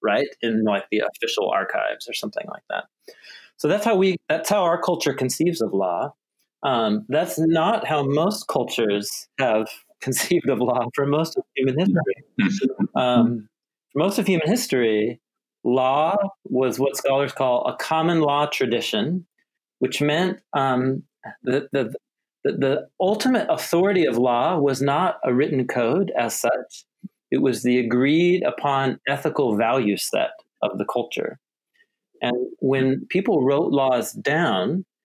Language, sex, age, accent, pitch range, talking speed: English, male, 40-59, American, 120-180 Hz, 150 wpm